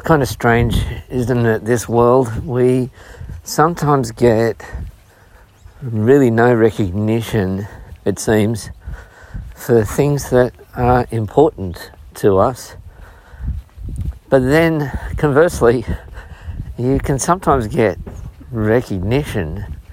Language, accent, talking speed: English, Australian, 90 wpm